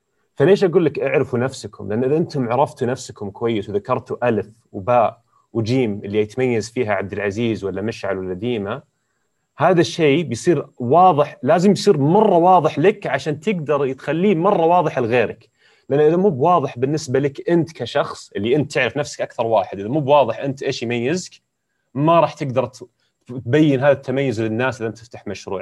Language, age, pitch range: Arabic, 30-49, 115-150 Hz